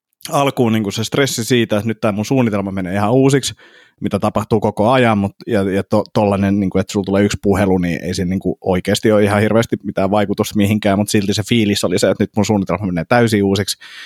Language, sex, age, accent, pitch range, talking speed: Finnish, male, 30-49, native, 95-115 Hz, 220 wpm